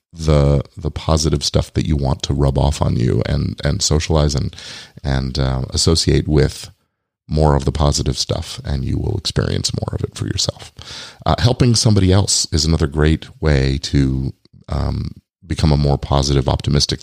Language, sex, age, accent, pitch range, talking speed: English, male, 40-59, American, 75-95 Hz, 175 wpm